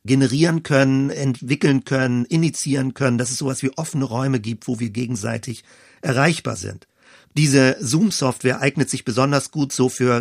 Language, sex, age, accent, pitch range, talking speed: German, male, 40-59, German, 115-140 Hz, 155 wpm